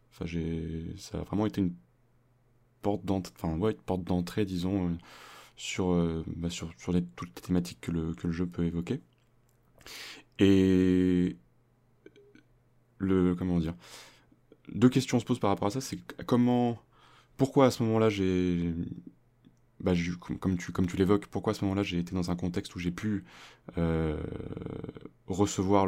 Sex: male